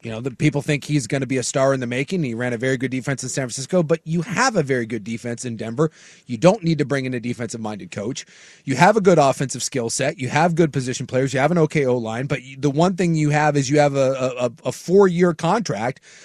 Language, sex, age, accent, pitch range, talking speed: English, male, 30-49, American, 135-170 Hz, 265 wpm